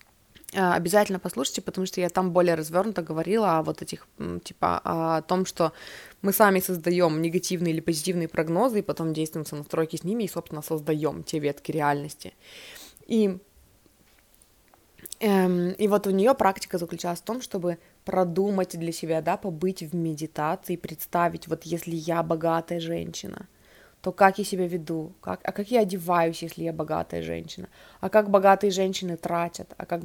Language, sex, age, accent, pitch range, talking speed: Russian, female, 20-39, native, 165-195 Hz, 160 wpm